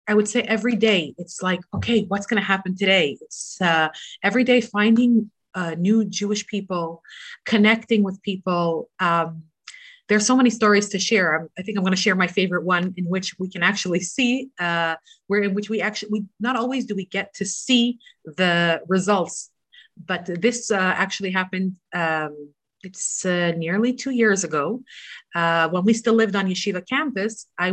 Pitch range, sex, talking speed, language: 175-225 Hz, female, 180 wpm, English